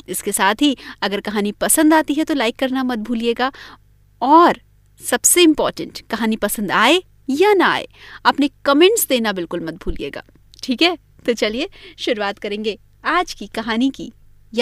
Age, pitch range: 30-49, 225-355 Hz